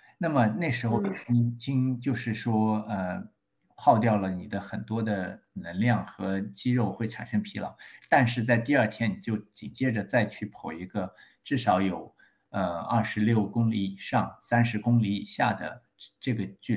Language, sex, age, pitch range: Chinese, male, 50-69, 105-120 Hz